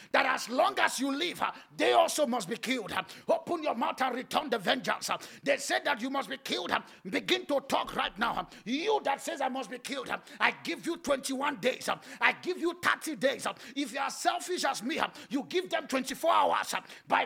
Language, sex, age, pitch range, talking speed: English, male, 50-69, 265-325 Hz, 205 wpm